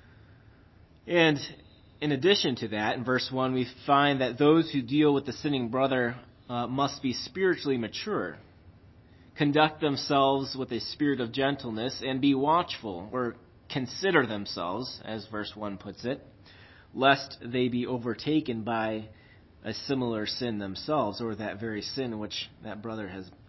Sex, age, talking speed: male, 30-49, 150 wpm